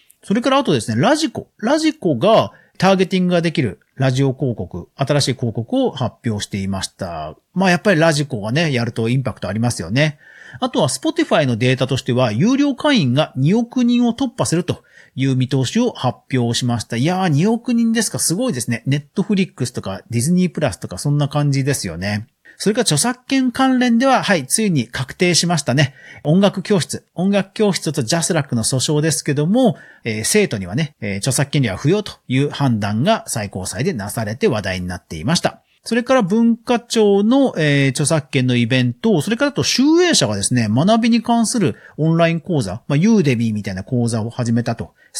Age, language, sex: 40-59, Japanese, male